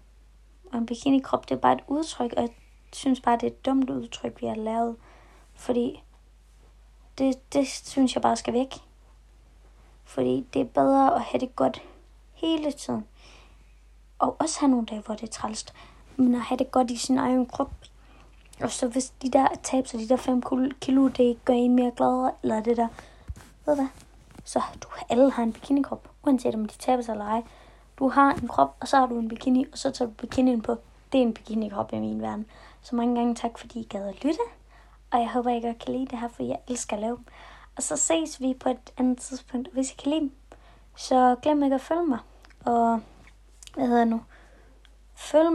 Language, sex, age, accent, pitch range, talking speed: Danish, female, 20-39, native, 230-270 Hz, 205 wpm